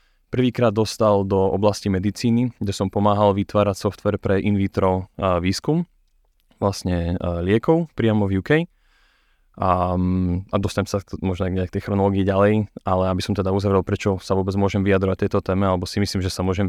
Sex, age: male, 20-39